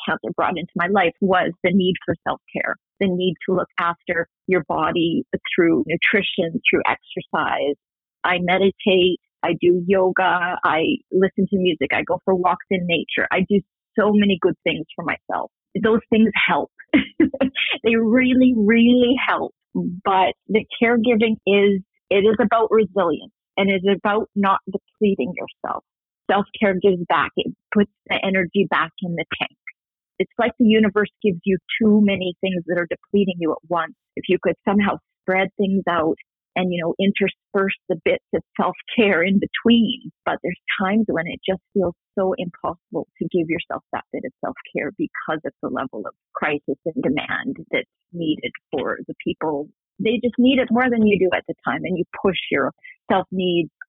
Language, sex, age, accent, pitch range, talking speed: English, female, 30-49, American, 180-215 Hz, 170 wpm